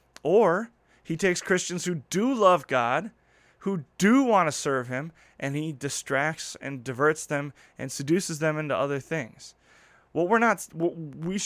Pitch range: 140-180 Hz